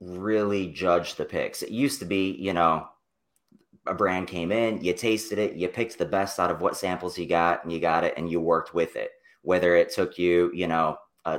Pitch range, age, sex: 85-100 Hz, 30-49, male